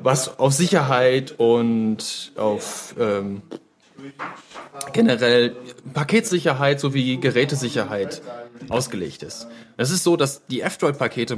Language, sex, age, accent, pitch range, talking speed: German, male, 30-49, German, 120-145 Hz, 95 wpm